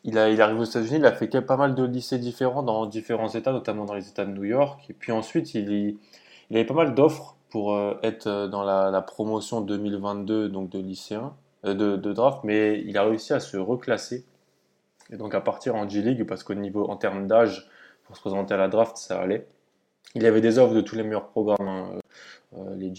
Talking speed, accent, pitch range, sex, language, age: 230 wpm, French, 100-115 Hz, male, French, 20-39